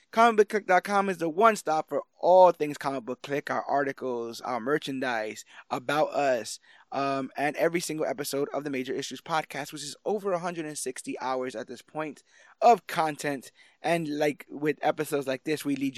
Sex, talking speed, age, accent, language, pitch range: male, 160 wpm, 20-39, American, English, 135-165 Hz